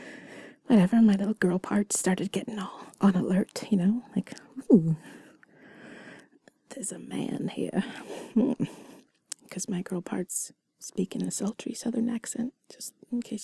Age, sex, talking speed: 30-49, female, 140 wpm